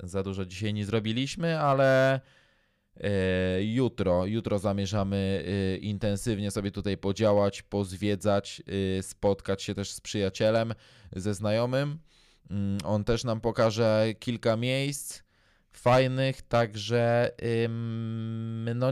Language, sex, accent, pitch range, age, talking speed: Polish, male, native, 100-120 Hz, 20-39, 95 wpm